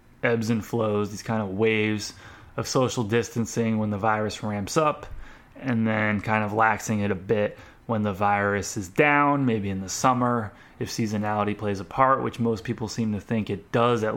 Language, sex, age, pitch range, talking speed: English, male, 20-39, 105-120 Hz, 195 wpm